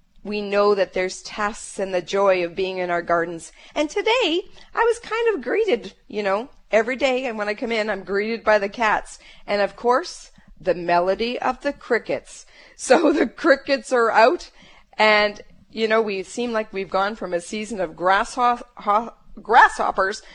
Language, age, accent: English, 40-59, American